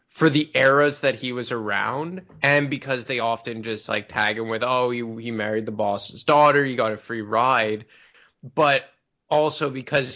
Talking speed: 185 wpm